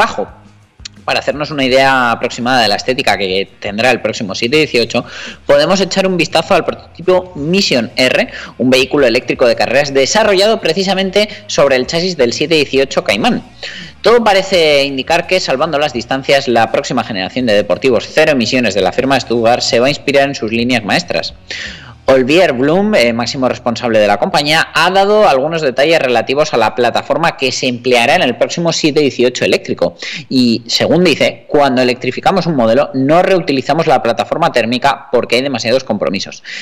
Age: 20-39